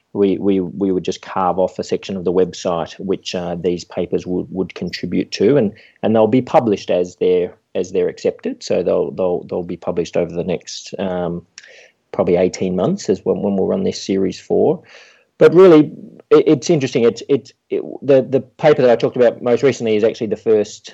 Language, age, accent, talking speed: English, 40-59, Australian, 205 wpm